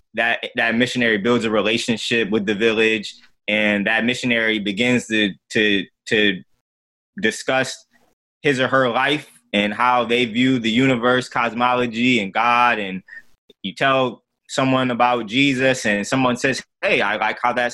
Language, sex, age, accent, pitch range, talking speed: English, male, 20-39, American, 105-125 Hz, 150 wpm